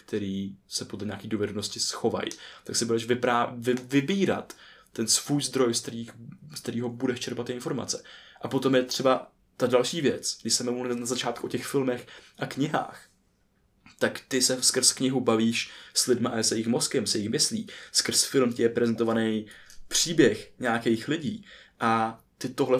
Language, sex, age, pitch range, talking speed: Czech, male, 20-39, 120-135 Hz, 165 wpm